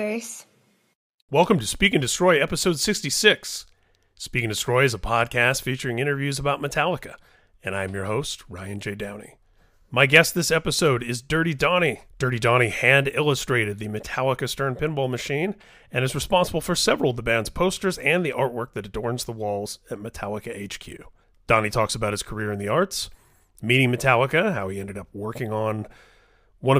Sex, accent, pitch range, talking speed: male, American, 105-135 Hz, 170 wpm